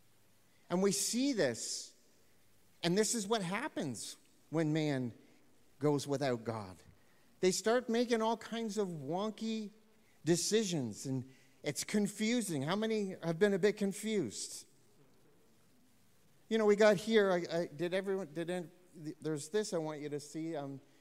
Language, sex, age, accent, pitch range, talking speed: English, male, 50-69, American, 145-185 Hz, 135 wpm